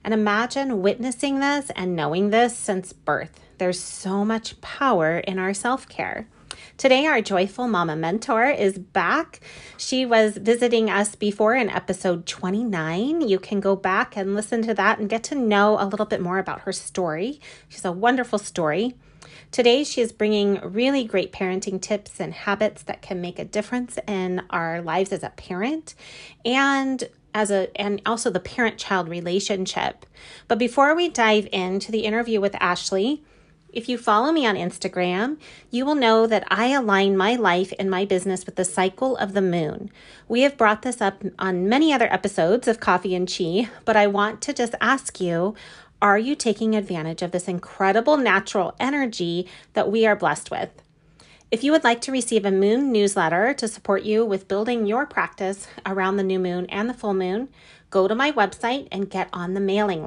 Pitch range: 190-235 Hz